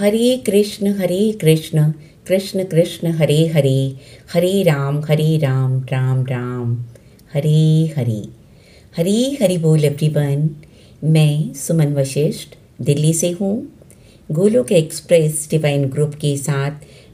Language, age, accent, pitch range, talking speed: Hindi, 50-69, native, 135-170 Hz, 110 wpm